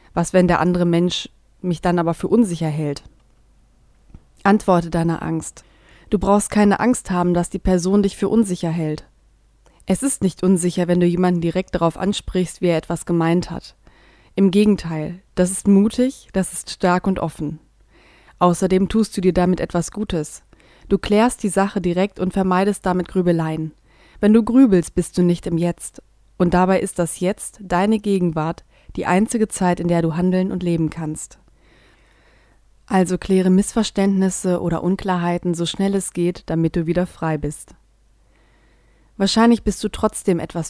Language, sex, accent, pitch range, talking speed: German, female, German, 170-195 Hz, 165 wpm